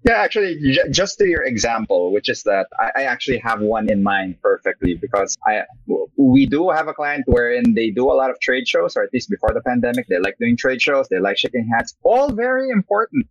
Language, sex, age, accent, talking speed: English, male, 20-39, Filipino, 220 wpm